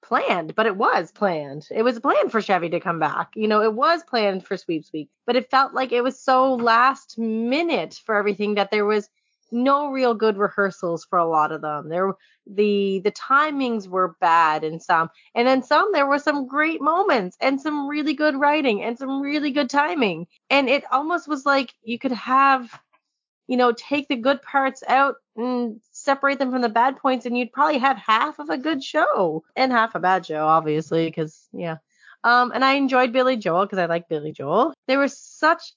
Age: 30-49